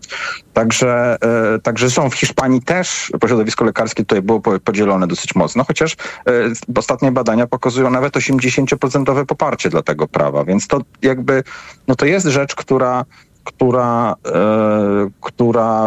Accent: native